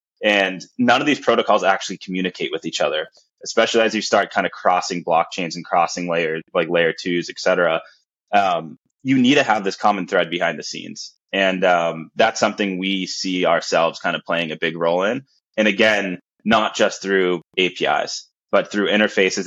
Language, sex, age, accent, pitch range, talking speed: English, male, 10-29, American, 85-100 Hz, 185 wpm